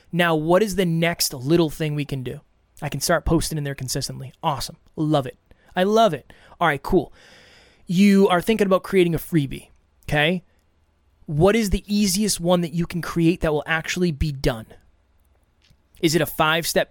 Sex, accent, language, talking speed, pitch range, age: male, American, English, 185 wpm, 145-185 Hz, 20-39